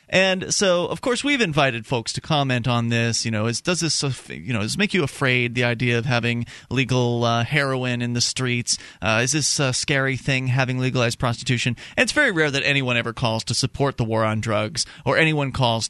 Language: English